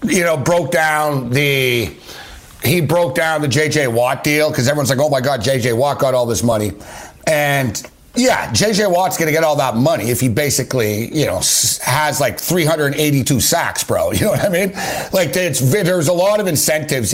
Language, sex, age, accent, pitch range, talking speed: English, male, 60-79, American, 135-180 Hz, 195 wpm